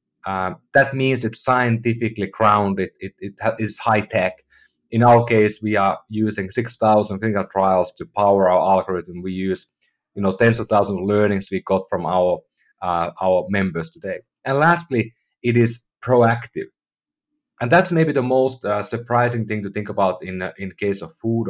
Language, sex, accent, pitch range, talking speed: English, male, Finnish, 100-130 Hz, 185 wpm